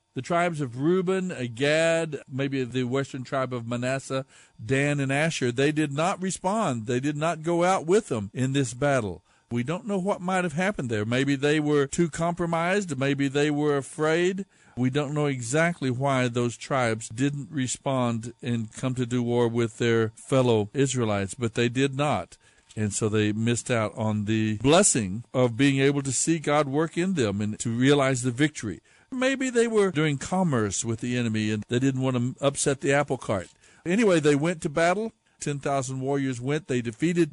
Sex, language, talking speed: male, English, 185 wpm